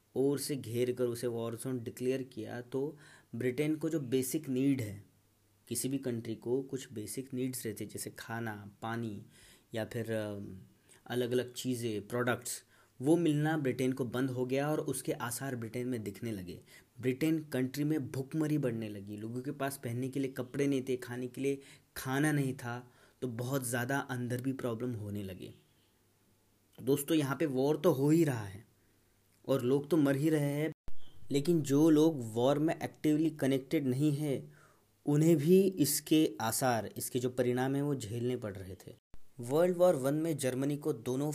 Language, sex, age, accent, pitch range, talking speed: Hindi, male, 30-49, native, 110-135 Hz, 175 wpm